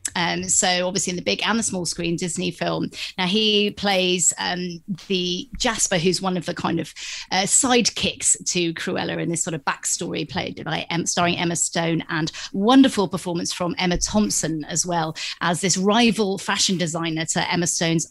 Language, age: English, 30-49